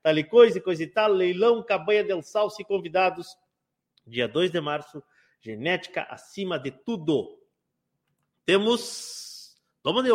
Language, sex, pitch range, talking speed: Portuguese, male, 160-225 Hz, 125 wpm